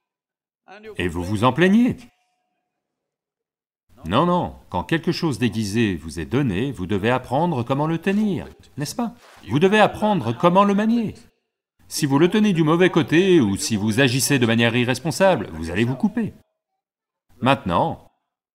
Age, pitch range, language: 40-59, 110-170 Hz, English